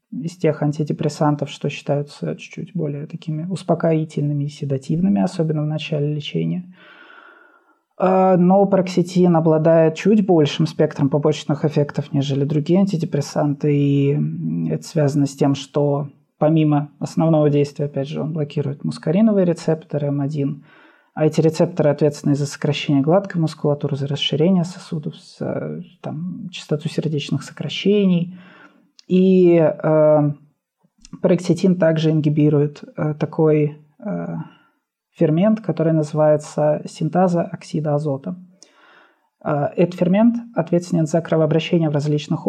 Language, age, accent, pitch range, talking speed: Russian, 20-39, native, 150-180 Hz, 110 wpm